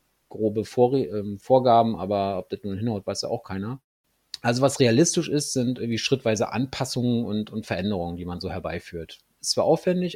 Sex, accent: male, German